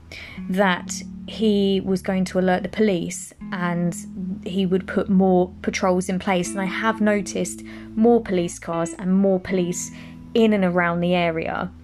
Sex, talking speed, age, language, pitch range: female, 155 wpm, 20-39, English, 180-220 Hz